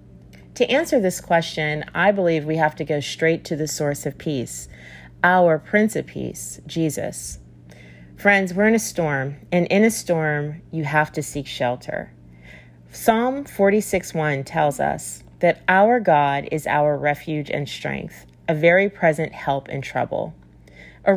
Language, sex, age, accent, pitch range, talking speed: English, female, 40-59, American, 135-175 Hz, 155 wpm